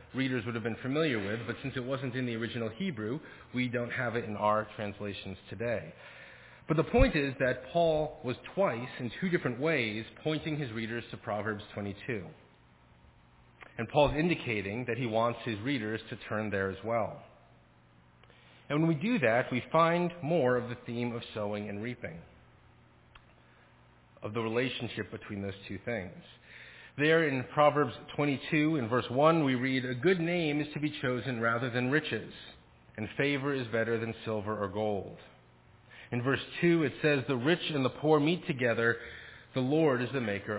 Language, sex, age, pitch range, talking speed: English, male, 40-59, 110-145 Hz, 175 wpm